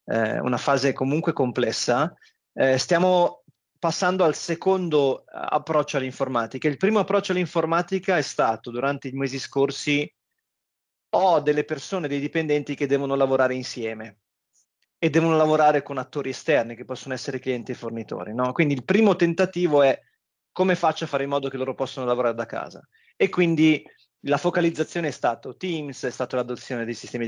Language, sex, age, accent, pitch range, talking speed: Italian, male, 30-49, native, 130-170 Hz, 160 wpm